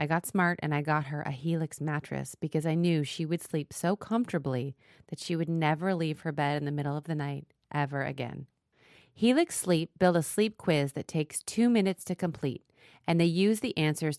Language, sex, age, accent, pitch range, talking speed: English, female, 30-49, American, 150-185 Hz, 210 wpm